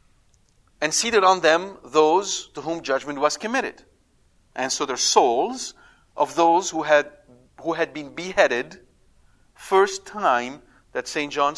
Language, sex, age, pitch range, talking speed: English, male, 50-69, 135-175 Hz, 140 wpm